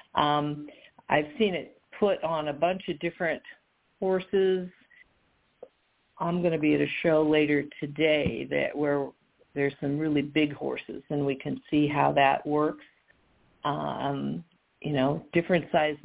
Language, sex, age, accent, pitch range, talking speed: English, female, 50-69, American, 145-180 Hz, 145 wpm